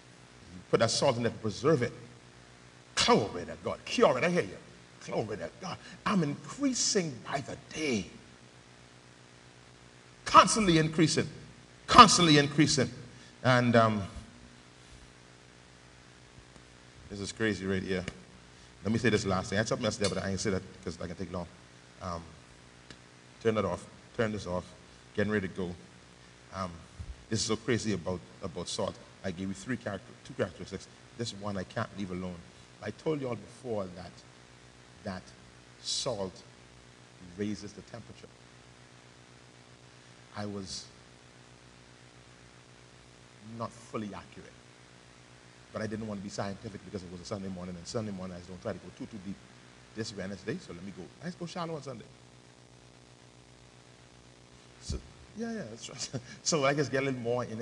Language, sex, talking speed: English, male, 155 wpm